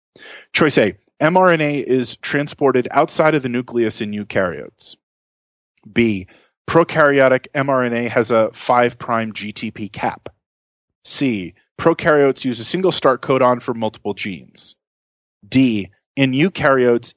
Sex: male